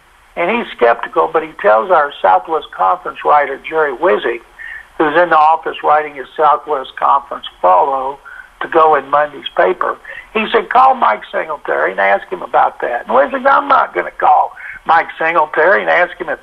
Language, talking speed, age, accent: English, 180 wpm, 60-79, American